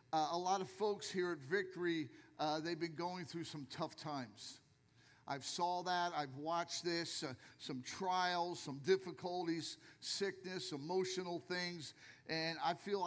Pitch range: 150-180 Hz